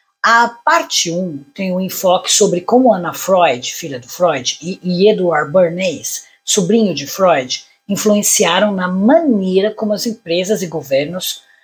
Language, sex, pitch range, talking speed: Portuguese, female, 180-230 Hz, 140 wpm